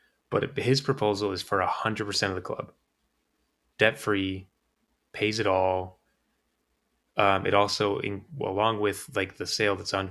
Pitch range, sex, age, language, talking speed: 95-105 Hz, male, 20-39, English, 155 wpm